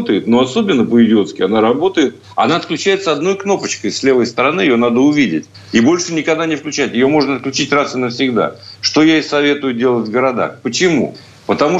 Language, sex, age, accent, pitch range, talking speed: Russian, male, 50-69, native, 110-145 Hz, 185 wpm